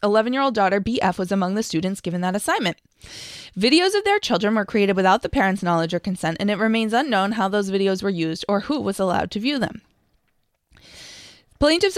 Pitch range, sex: 185-240 Hz, female